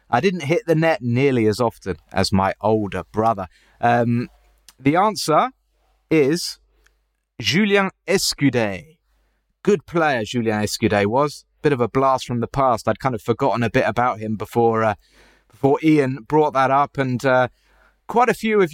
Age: 30-49